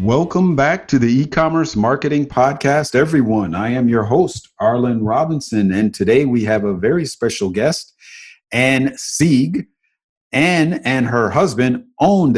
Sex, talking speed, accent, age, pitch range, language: male, 140 wpm, American, 40-59, 110-135 Hz, English